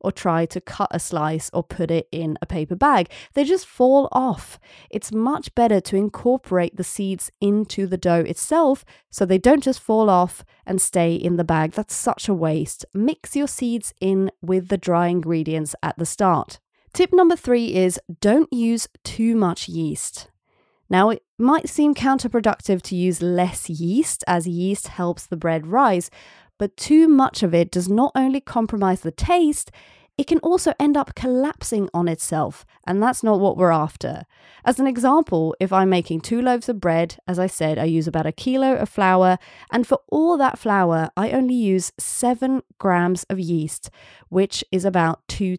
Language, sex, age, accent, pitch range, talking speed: English, female, 30-49, British, 175-245 Hz, 185 wpm